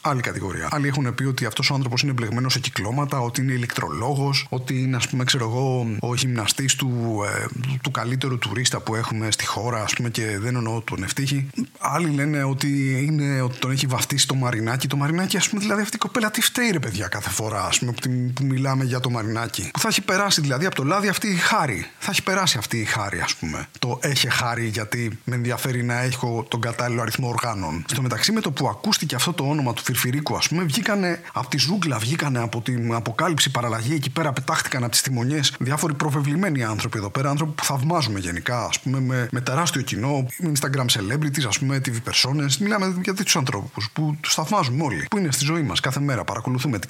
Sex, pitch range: male, 120-155 Hz